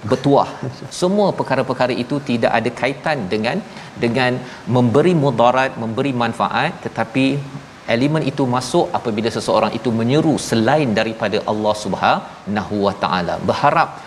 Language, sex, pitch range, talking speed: Malayalam, male, 115-140 Hz, 120 wpm